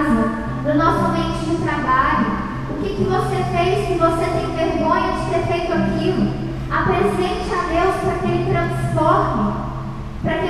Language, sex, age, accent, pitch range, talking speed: Portuguese, female, 10-29, Brazilian, 295-350 Hz, 155 wpm